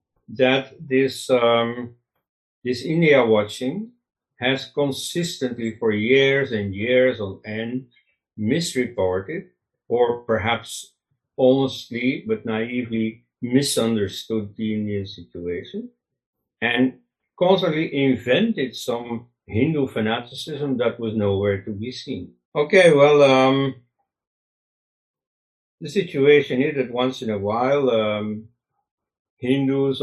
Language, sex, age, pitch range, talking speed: English, male, 60-79, 110-135 Hz, 100 wpm